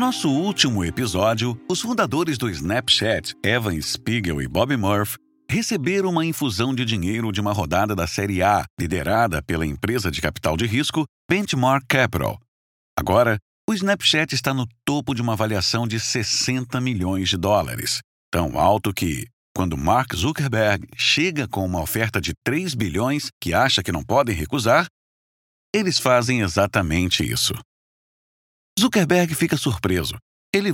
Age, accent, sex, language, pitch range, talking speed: 60-79, Brazilian, male, Portuguese, 95-140 Hz, 145 wpm